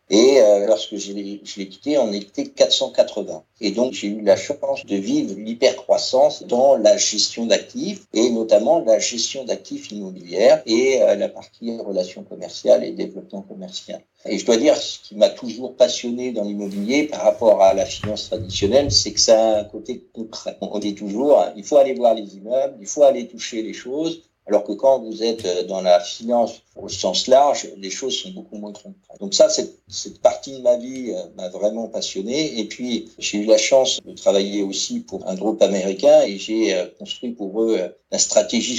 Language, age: French, 60-79